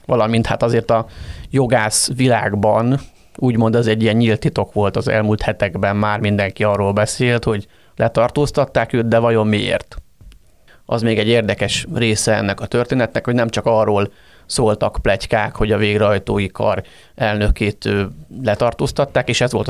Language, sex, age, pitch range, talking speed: Hungarian, male, 30-49, 105-120 Hz, 150 wpm